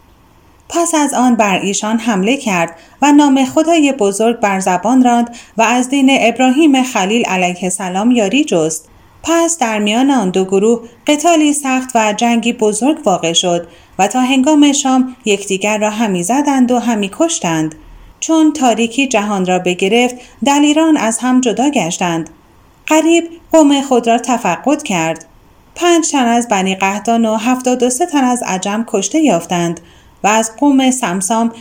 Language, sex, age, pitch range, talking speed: Persian, female, 30-49, 190-270 Hz, 155 wpm